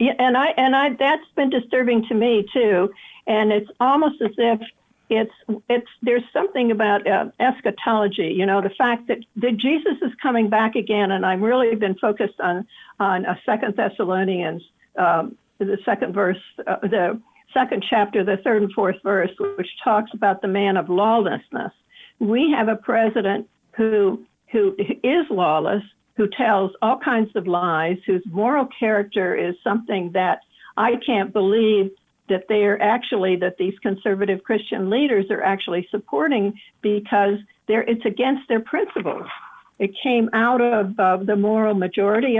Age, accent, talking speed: 60-79, American, 160 wpm